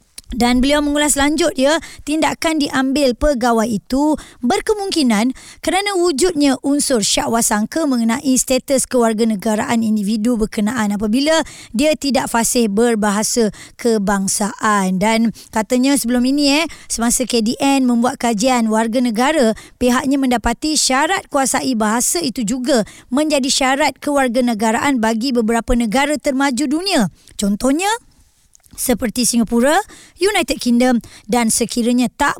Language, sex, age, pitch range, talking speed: Malay, male, 20-39, 230-285 Hz, 110 wpm